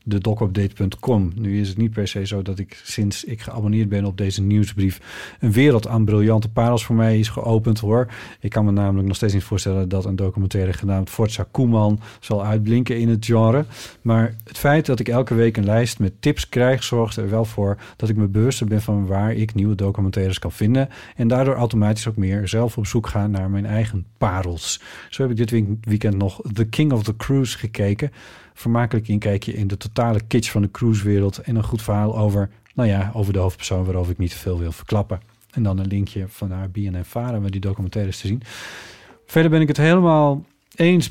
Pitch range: 100-125 Hz